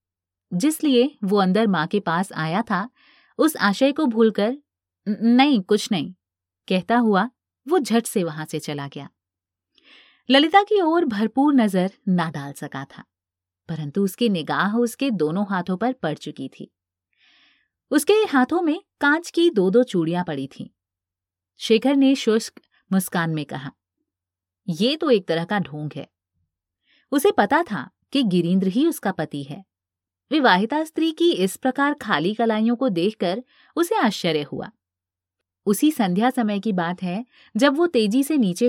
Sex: female